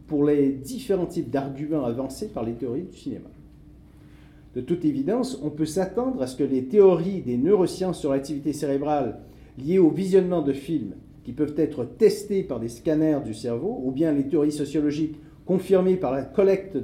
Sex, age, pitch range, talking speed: male, 50-69, 135-195 Hz, 180 wpm